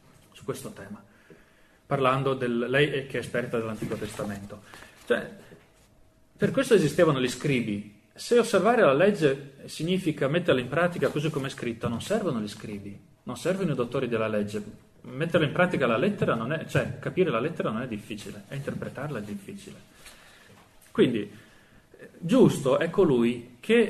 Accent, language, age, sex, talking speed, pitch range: native, Italian, 30-49, male, 150 wpm, 115-170 Hz